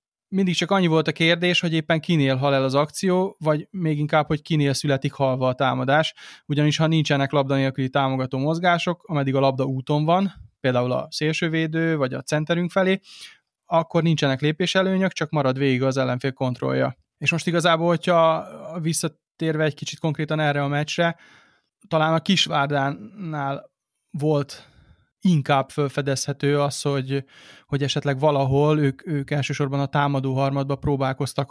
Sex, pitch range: male, 135-160 Hz